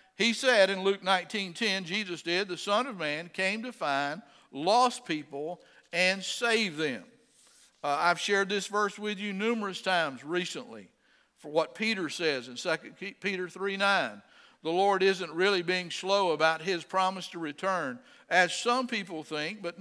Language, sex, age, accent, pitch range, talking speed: English, male, 50-69, American, 165-205 Hz, 165 wpm